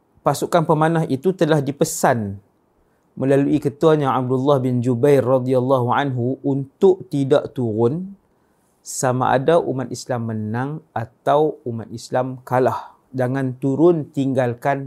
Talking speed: 110 wpm